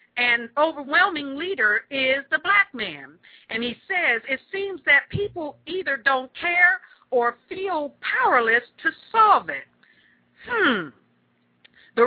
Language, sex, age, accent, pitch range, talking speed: English, female, 50-69, American, 220-300 Hz, 125 wpm